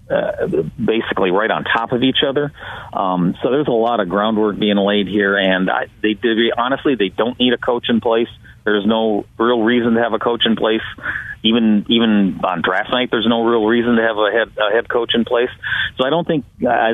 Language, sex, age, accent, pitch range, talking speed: English, male, 40-59, American, 100-115 Hz, 225 wpm